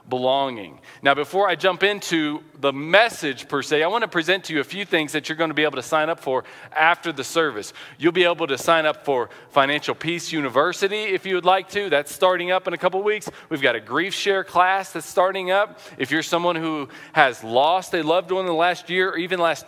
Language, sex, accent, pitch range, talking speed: English, male, American, 145-185 Hz, 240 wpm